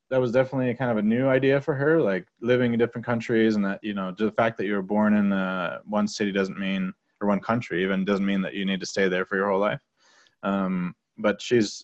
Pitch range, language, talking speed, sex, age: 100-120 Hz, English, 260 wpm, male, 20-39